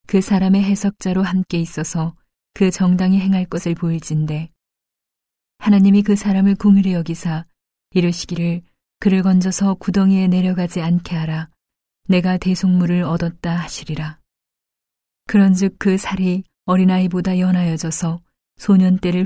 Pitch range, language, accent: 170-190 Hz, Korean, native